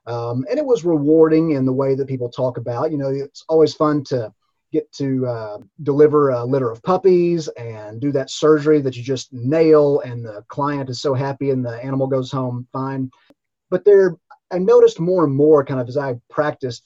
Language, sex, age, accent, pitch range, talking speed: English, male, 30-49, American, 125-150 Hz, 205 wpm